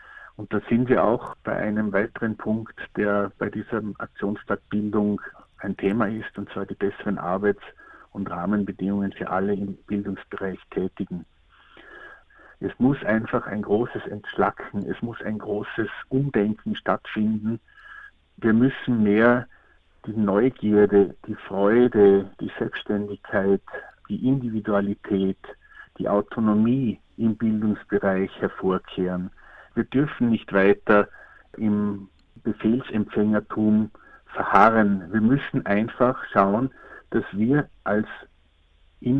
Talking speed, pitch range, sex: 110 wpm, 100-115 Hz, male